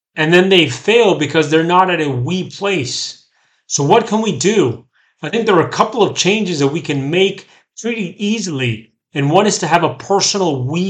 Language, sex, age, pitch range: English, male, 40-59, 145-185 Hz